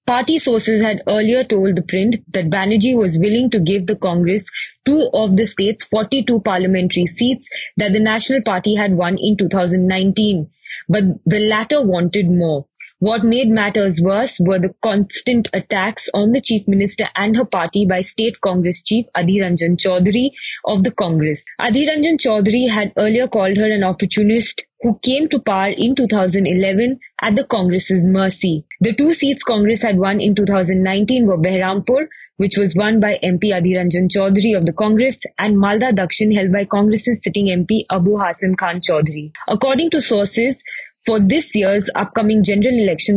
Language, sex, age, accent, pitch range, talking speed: English, female, 20-39, Indian, 190-225 Hz, 165 wpm